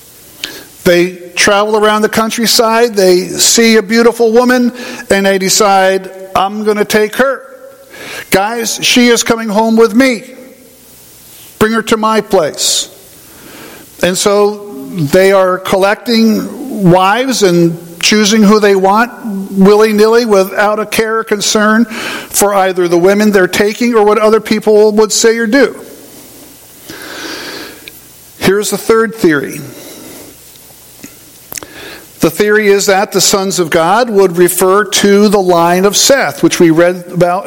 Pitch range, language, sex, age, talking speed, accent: 180-220 Hz, English, male, 50-69, 135 wpm, American